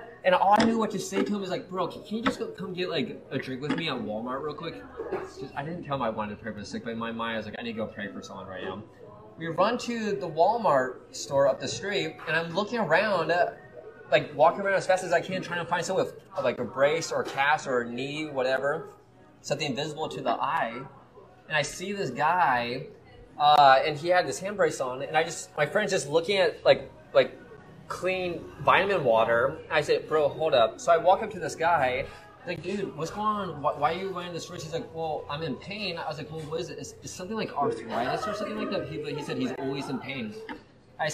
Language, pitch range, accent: English, 140-195 Hz, American